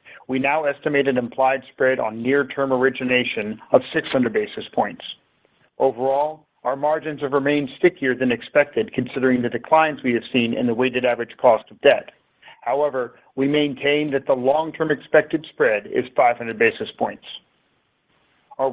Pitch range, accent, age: 130-155 Hz, American, 50-69